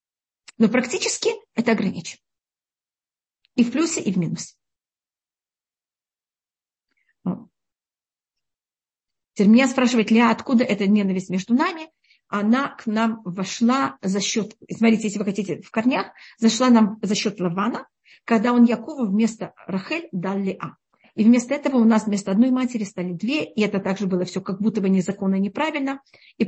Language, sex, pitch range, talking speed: Russian, female, 195-240 Hz, 145 wpm